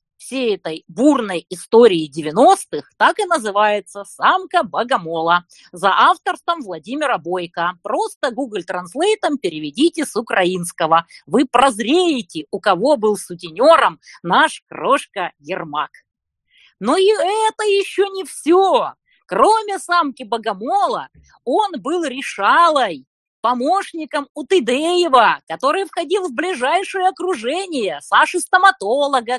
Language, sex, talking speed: Russian, female, 100 wpm